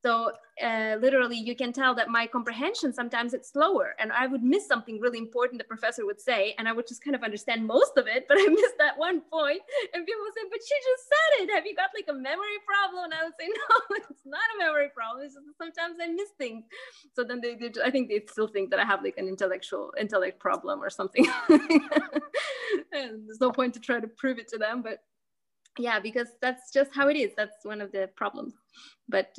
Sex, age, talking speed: female, 20-39, 235 wpm